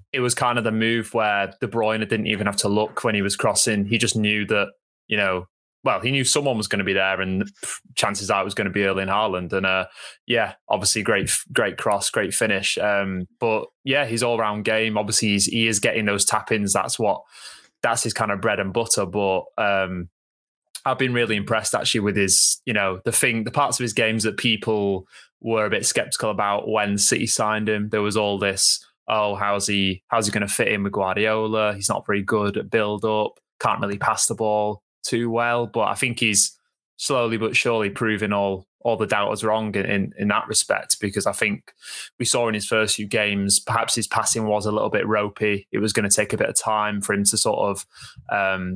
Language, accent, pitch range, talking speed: English, British, 100-110 Hz, 225 wpm